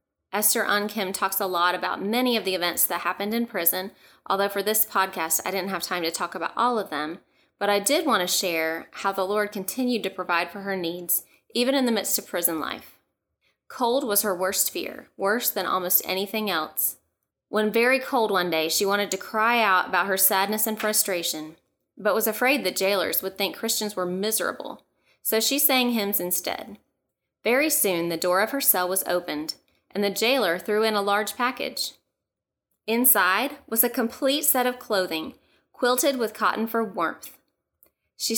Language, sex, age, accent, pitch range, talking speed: English, female, 20-39, American, 180-225 Hz, 190 wpm